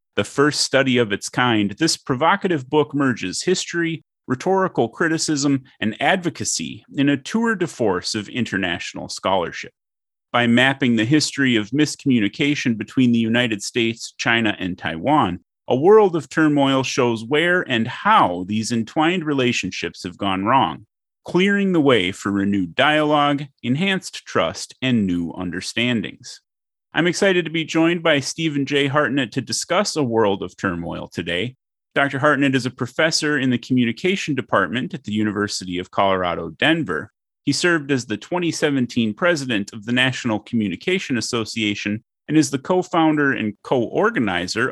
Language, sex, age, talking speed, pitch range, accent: English, male, 30-49, 145 wpm, 105-150 Hz, American